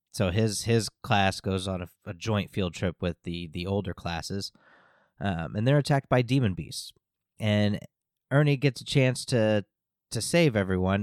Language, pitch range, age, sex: English, 95-120 Hz, 30-49, male